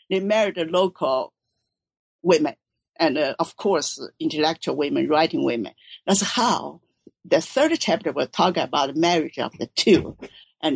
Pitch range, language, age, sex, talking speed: 170-230 Hz, English, 50-69, female, 150 wpm